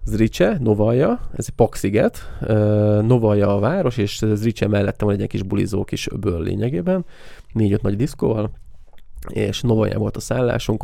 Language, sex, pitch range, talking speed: Hungarian, male, 100-115 Hz, 160 wpm